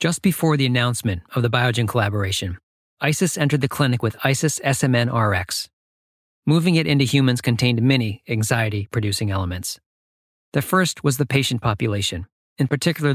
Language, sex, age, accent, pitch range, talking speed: English, male, 40-59, American, 105-140 Hz, 145 wpm